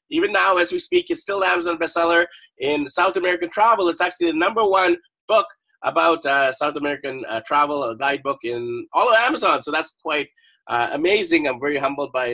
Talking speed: 200 wpm